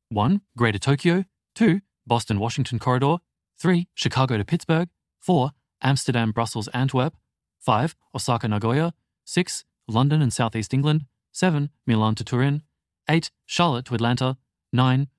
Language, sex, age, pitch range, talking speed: English, male, 20-39, 105-140 Hz, 125 wpm